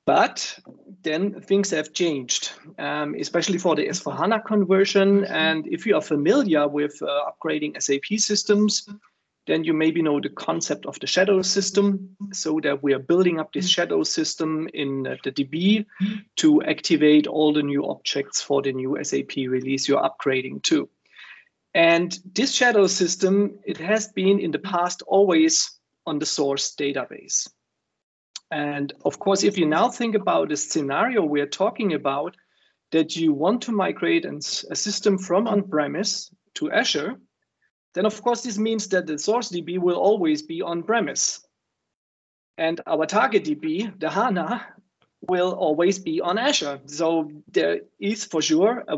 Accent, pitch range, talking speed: German, 150-205 Hz, 155 wpm